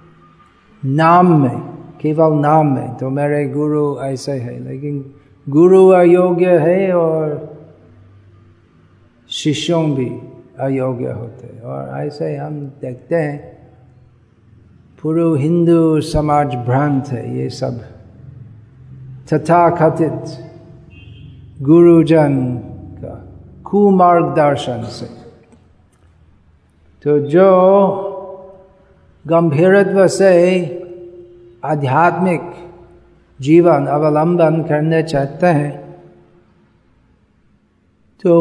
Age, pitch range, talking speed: 50-69, 125-170 Hz, 80 wpm